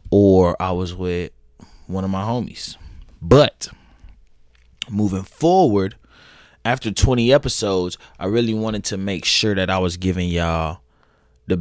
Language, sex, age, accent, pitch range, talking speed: English, male, 20-39, American, 85-110 Hz, 135 wpm